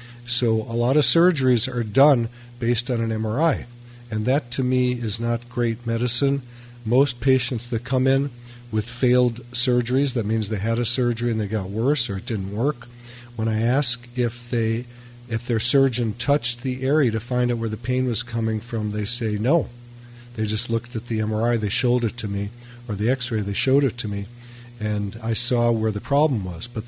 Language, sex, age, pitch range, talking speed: English, male, 50-69, 115-130 Hz, 205 wpm